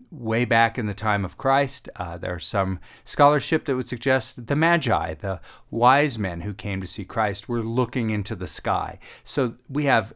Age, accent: 40-59, American